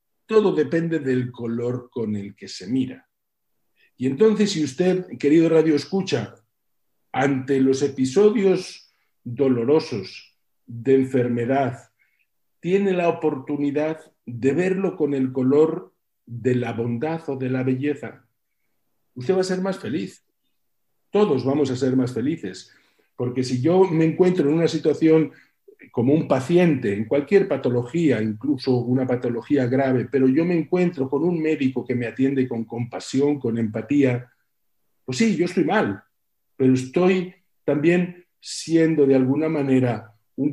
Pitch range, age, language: 125-155 Hz, 50-69, Spanish